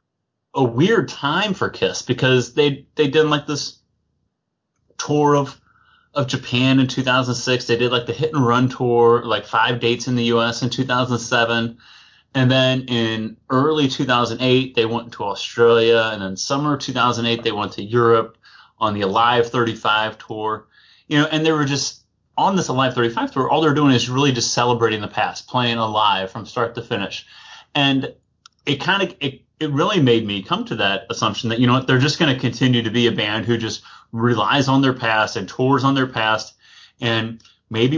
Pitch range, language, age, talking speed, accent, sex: 115-130 Hz, English, 30-49, 190 wpm, American, male